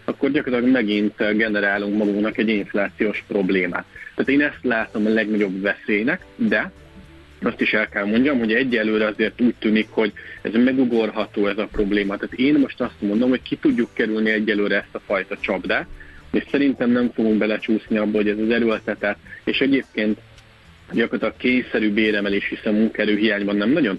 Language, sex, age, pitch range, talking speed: Hungarian, male, 30-49, 100-120 Hz, 170 wpm